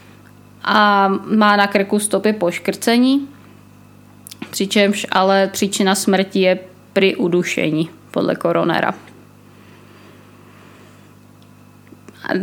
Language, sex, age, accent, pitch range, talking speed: Czech, female, 20-39, native, 185-210 Hz, 80 wpm